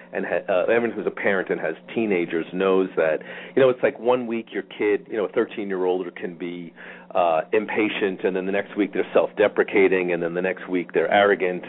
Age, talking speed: 40-59, 210 wpm